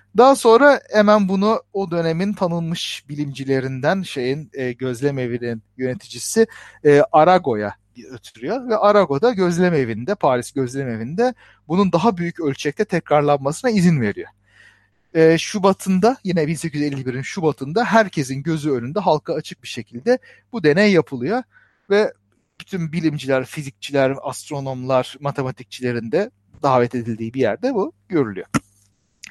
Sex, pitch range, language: male, 130-190 Hz, Turkish